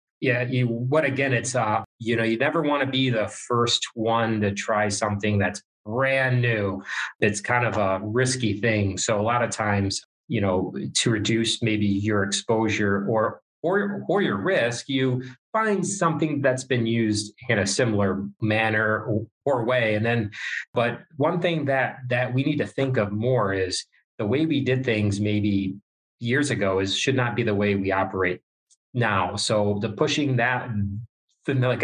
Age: 30-49